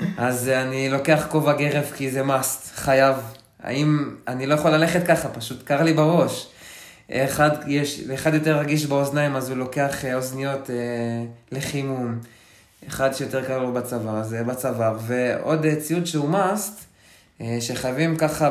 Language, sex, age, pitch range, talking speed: Hebrew, male, 20-39, 125-160 Hz, 135 wpm